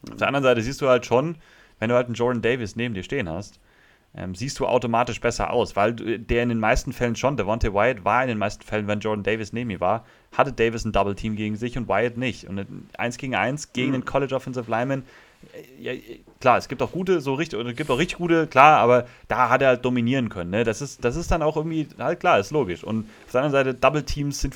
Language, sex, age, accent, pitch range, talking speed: German, male, 30-49, German, 105-130 Hz, 255 wpm